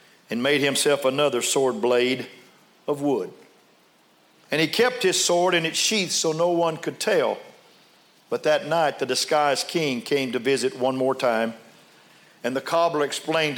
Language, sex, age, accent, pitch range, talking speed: English, male, 50-69, American, 140-180 Hz, 165 wpm